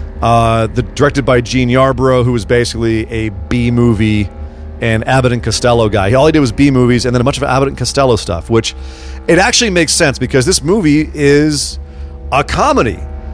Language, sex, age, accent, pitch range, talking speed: English, male, 40-59, American, 105-140 Hz, 185 wpm